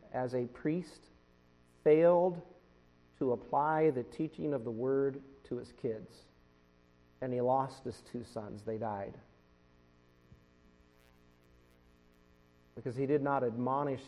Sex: male